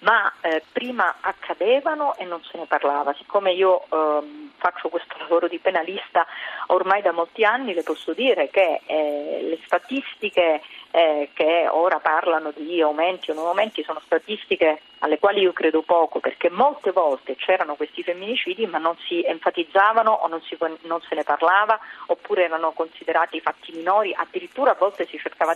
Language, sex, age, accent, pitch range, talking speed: Italian, female, 40-59, native, 165-235 Hz, 165 wpm